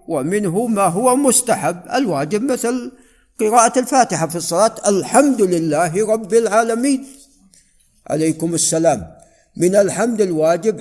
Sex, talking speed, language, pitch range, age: male, 105 wpm, Arabic, 160-195 Hz, 50-69